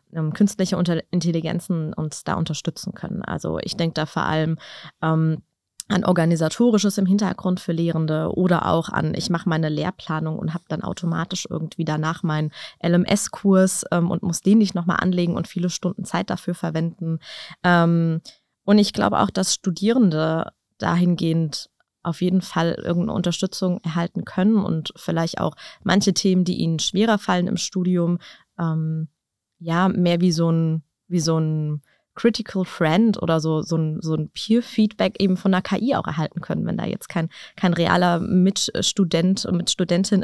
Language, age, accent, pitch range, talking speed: German, 20-39, German, 165-195 Hz, 155 wpm